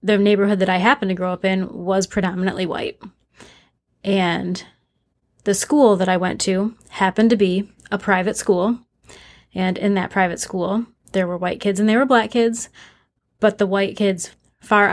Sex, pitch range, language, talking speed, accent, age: female, 185-205 Hz, English, 175 wpm, American, 20-39